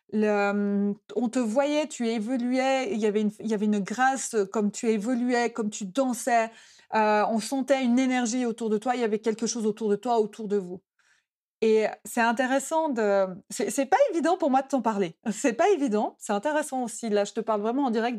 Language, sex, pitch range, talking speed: French, female, 205-245 Hz, 220 wpm